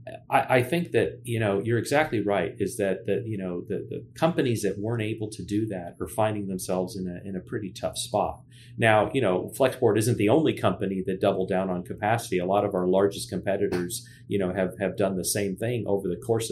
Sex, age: male, 40-59